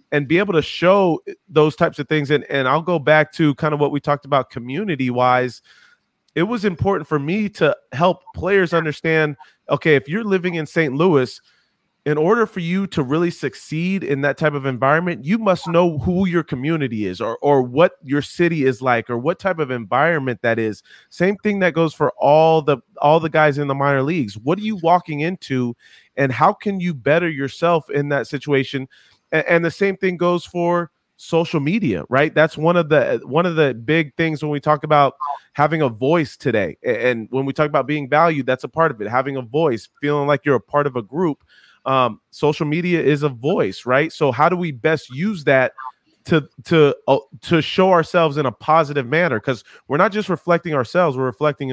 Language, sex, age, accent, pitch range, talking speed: English, male, 30-49, American, 140-175 Hz, 210 wpm